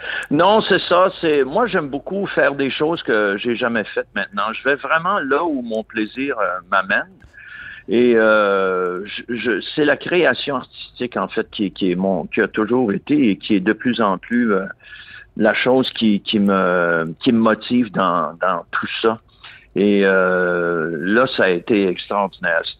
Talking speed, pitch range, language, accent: 185 wpm, 100-125 Hz, French, French